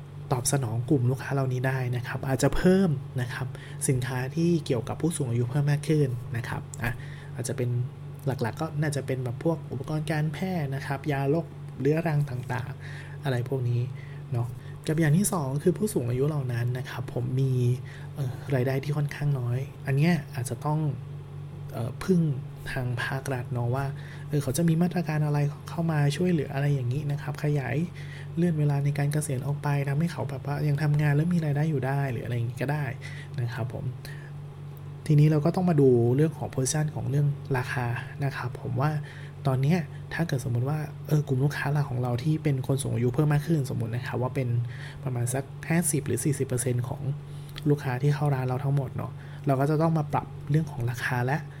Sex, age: male, 20-39